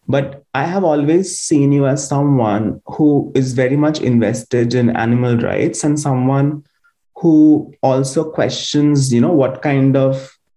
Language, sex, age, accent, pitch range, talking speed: English, male, 30-49, Indian, 120-145 Hz, 150 wpm